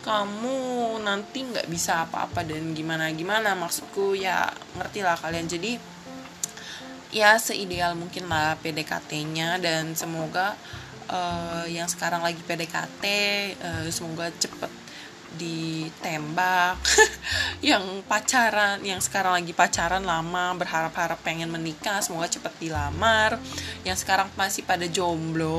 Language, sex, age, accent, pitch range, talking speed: Indonesian, female, 20-39, native, 160-200 Hz, 115 wpm